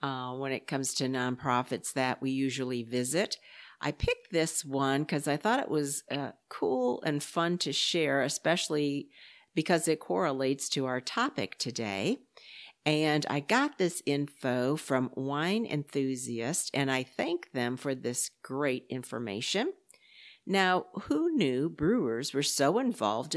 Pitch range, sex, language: 135-195 Hz, female, English